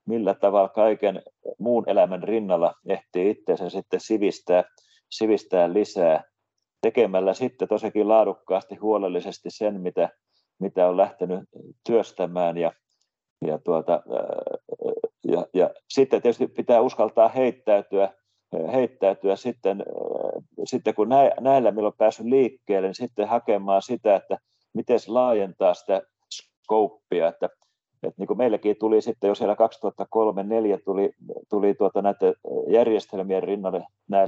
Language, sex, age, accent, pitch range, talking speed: Finnish, male, 40-59, native, 95-120 Hz, 115 wpm